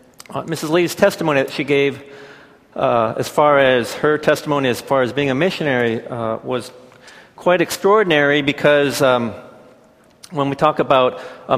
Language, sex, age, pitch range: Korean, male, 40-59, 125-150 Hz